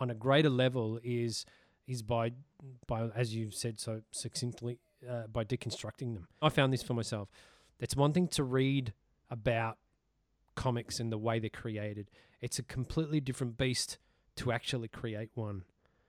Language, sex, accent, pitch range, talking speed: English, male, Australian, 110-130 Hz, 160 wpm